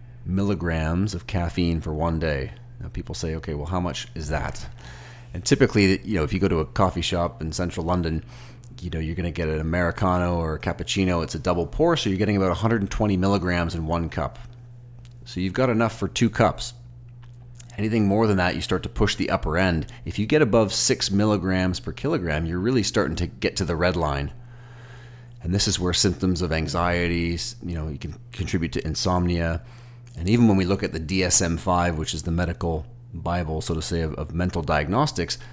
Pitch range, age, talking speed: 85-115 Hz, 30-49, 205 wpm